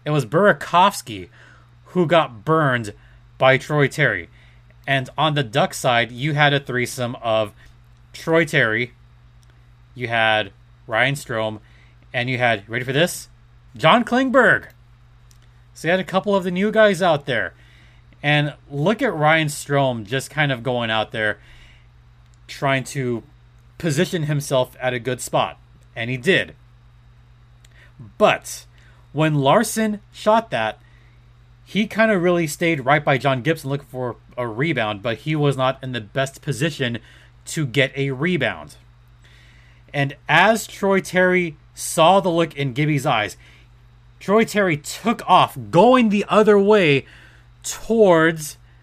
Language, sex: English, male